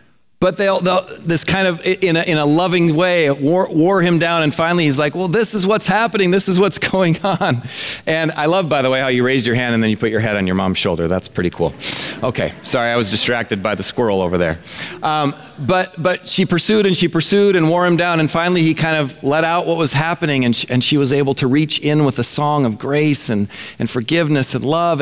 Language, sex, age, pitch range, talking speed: English, male, 40-59, 115-160 Hz, 255 wpm